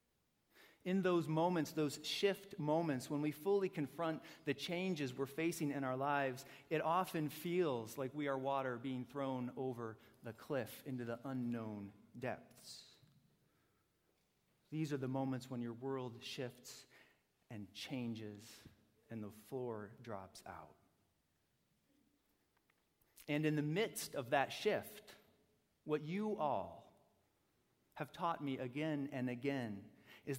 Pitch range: 115-150 Hz